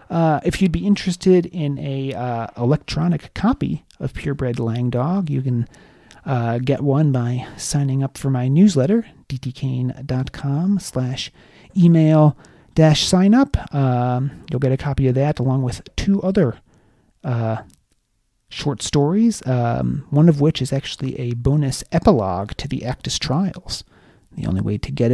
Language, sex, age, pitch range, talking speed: English, male, 30-49, 125-155 Hz, 150 wpm